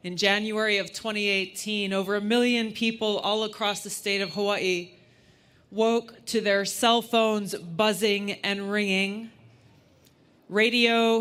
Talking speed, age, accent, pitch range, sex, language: 125 wpm, 30-49, American, 185-220 Hz, female, English